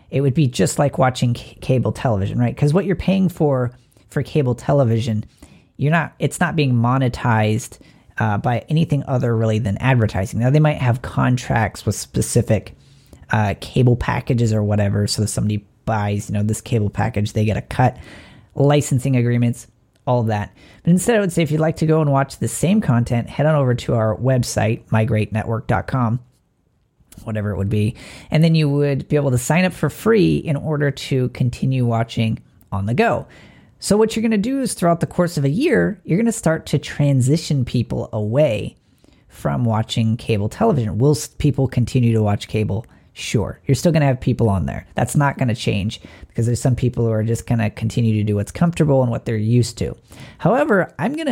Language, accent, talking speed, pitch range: English, American, 200 wpm, 110-145 Hz